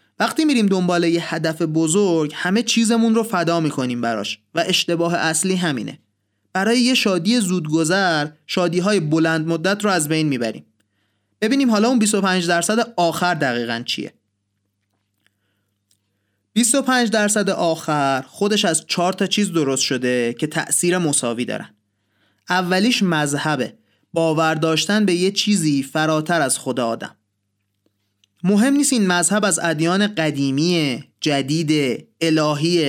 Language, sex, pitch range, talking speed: Persian, male, 135-190 Hz, 125 wpm